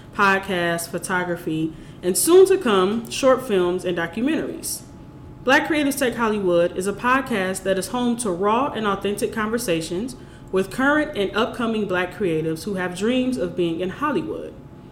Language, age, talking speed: English, 20-39, 145 wpm